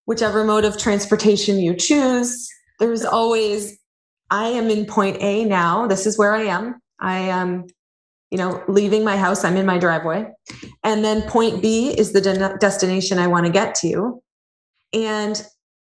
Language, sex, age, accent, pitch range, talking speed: English, female, 20-39, American, 185-225 Hz, 165 wpm